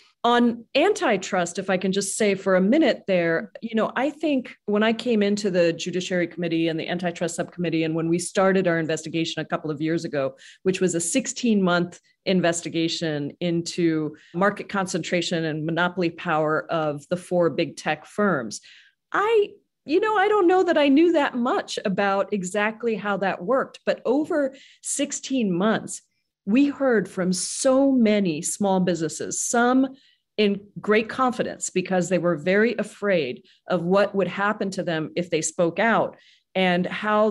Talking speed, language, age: 165 wpm, English, 40-59